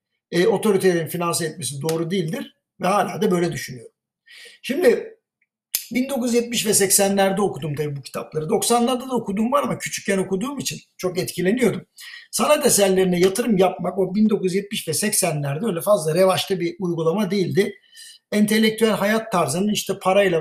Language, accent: Turkish, native